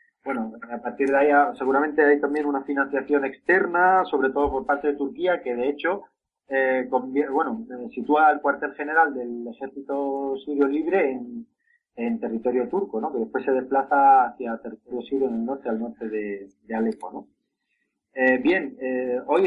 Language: Spanish